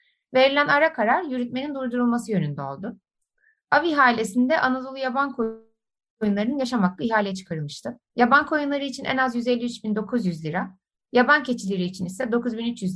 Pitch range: 200-265 Hz